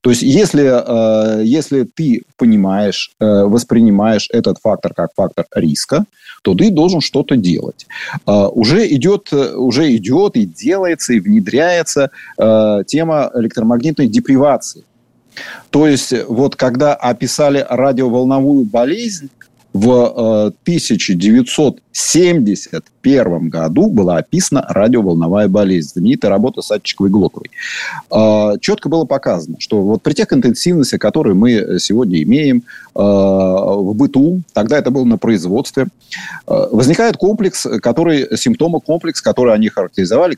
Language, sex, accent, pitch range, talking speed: Russian, male, native, 105-160 Hz, 110 wpm